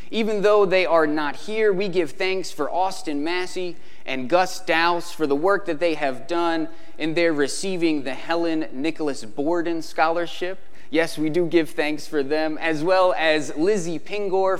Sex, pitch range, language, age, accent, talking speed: male, 135-175 Hz, English, 20-39, American, 175 wpm